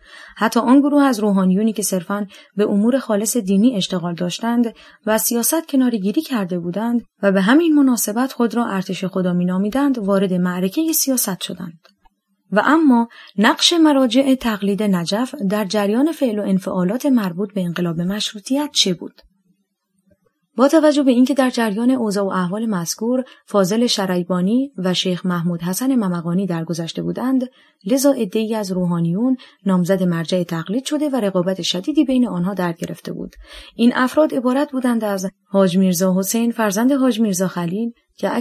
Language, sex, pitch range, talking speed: Persian, female, 190-250 Hz, 150 wpm